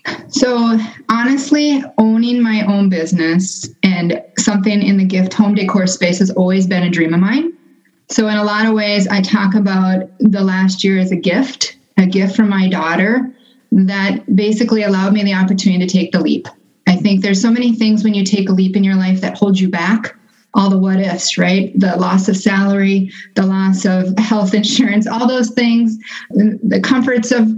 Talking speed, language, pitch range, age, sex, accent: 190 wpm, English, 190-225 Hz, 30-49, female, American